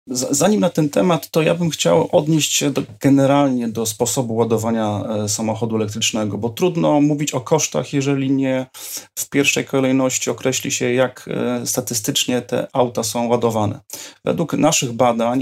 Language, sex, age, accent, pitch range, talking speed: Polish, male, 30-49, native, 115-140 Hz, 145 wpm